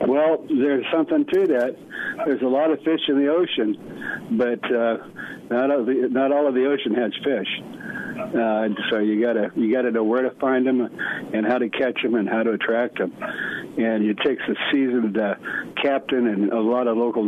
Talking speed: 210 wpm